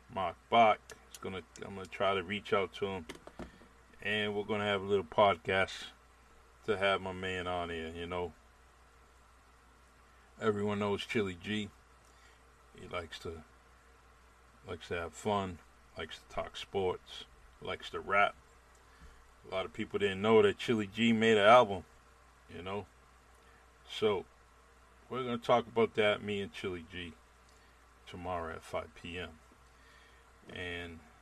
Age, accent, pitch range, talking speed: 50-69, American, 65-90 Hz, 145 wpm